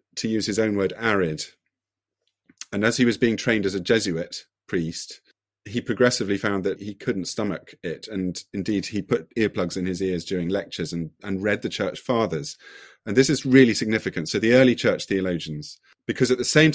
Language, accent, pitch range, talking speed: English, British, 95-120 Hz, 195 wpm